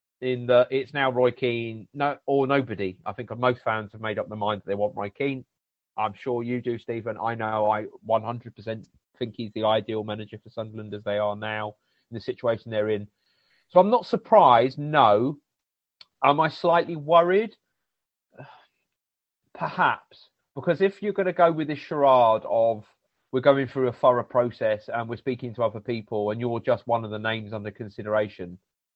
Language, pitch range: English, 110-140 Hz